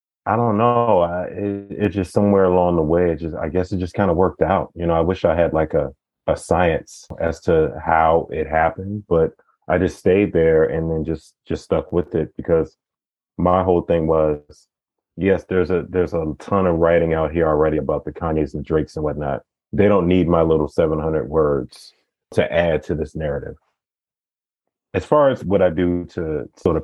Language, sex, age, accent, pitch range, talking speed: English, male, 30-49, American, 80-90 Hz, 205 wpm